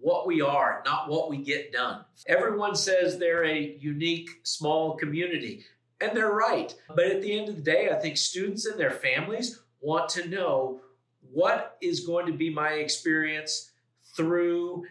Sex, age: male, 50-69